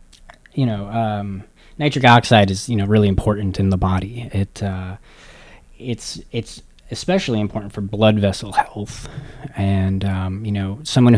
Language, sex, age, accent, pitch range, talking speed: English, male, 20-39, American, 100-115 Hz, 150 wpm